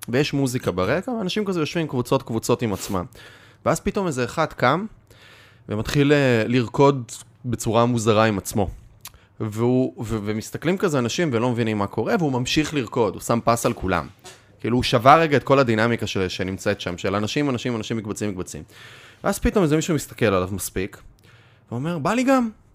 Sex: male